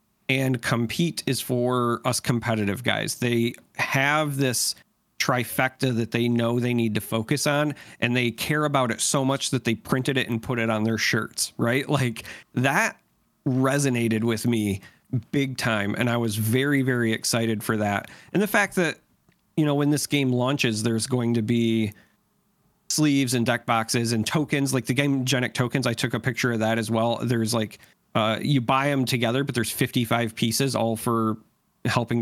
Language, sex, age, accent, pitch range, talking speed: English, male, 40-59, American, 115-140 Hz, 185 wpm